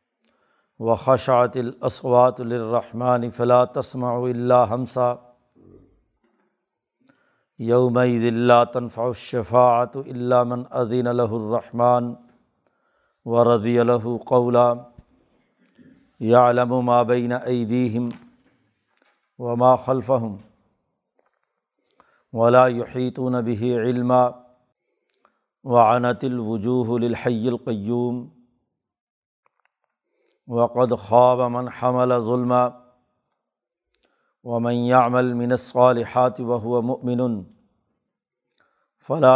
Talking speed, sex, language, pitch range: 65 wpm, male, Urdu, 120-125 Hz